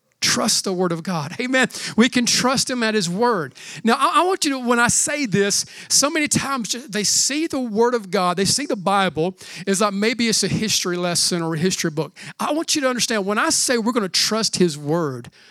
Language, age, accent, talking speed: English, 40-59, American, 235 wpm